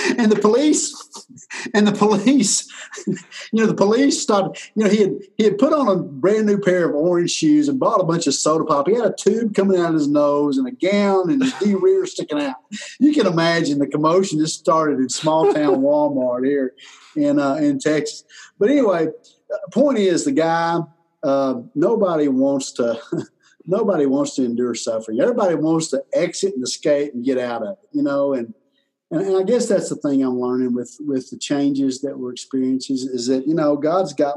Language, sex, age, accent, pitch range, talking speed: English, male, 50-69, American, 120-190 Hz, 205 wpm